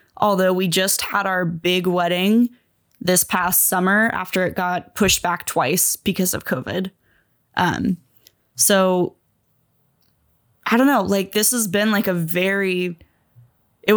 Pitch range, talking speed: 180-200 Hz, 140 wpm